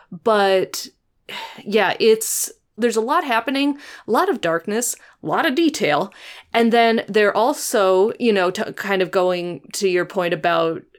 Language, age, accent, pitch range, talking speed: English, 20-39, American, 175-205 Hz, 160 wpm